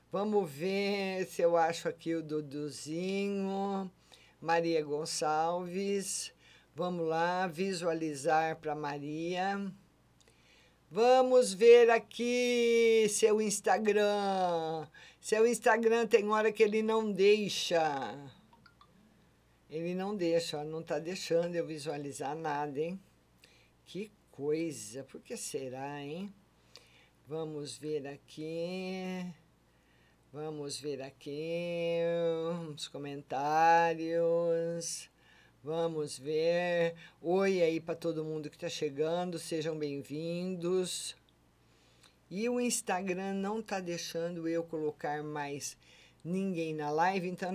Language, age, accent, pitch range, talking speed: Portuguese, 50-69, Brazilian, 155-195 Hz, 95 wpm